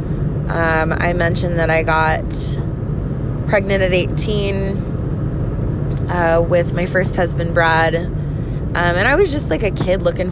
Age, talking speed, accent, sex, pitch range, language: 20-39, 140 wpm, American, female, 140-170 Hz, English